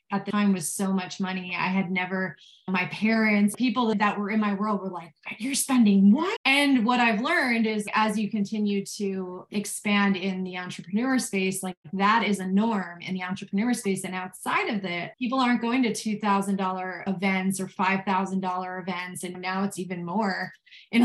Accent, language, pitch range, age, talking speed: American, English, 185-220 Hz, 20-39, 185 wpm